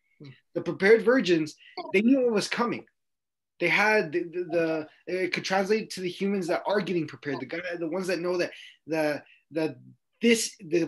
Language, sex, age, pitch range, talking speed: English, male, 20-39, 155-205 Hz, 190 wpm